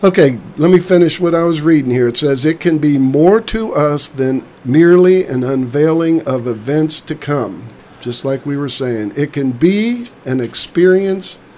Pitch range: 125-160 Hz